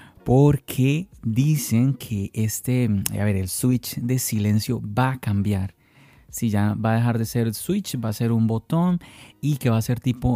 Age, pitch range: 30-49, 100-120 Hz